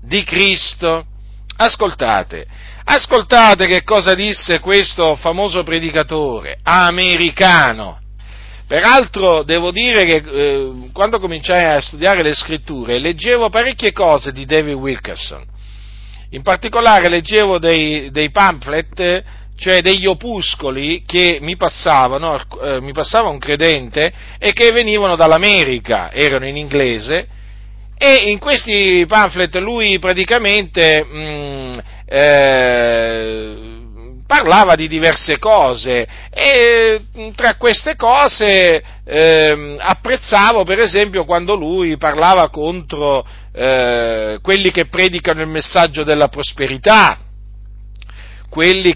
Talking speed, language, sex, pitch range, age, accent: 105 wpm, Italian, male, 130-195 Hz, 50-69, native